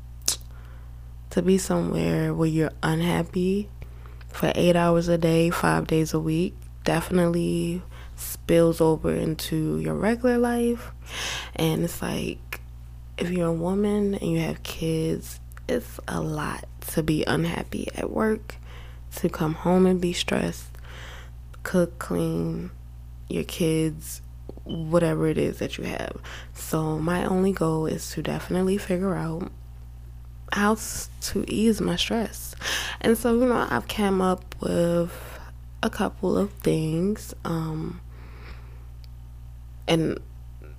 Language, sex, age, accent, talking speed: English, female, 20-39, American, 125 wpm